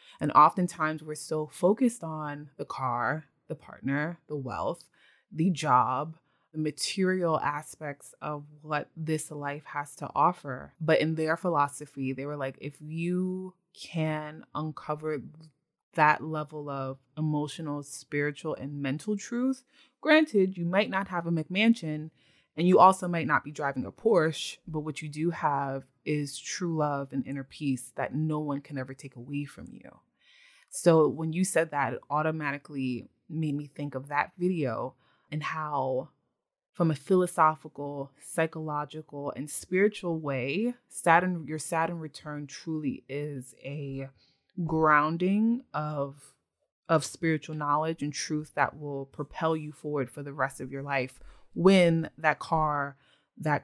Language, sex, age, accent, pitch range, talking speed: English, female, 20-39, American, 140-165 Hz, 145 wpm